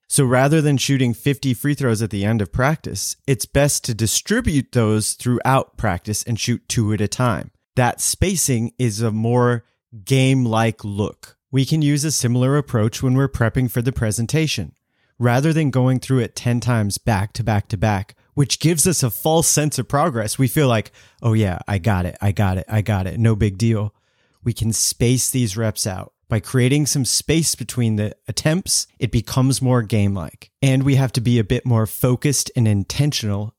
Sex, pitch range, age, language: male, 110-135 Hz, 30-49, English